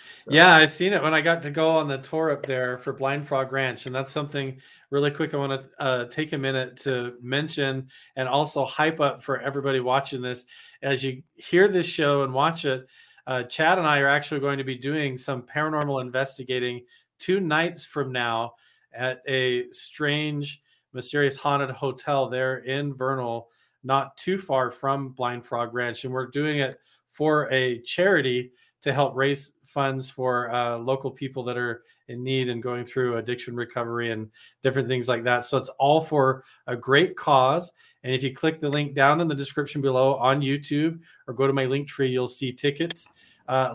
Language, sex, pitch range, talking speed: English, male, 130-145 Hz, 190 wpm